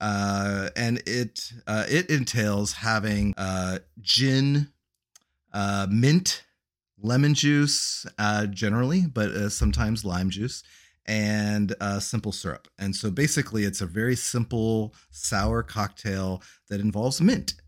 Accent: American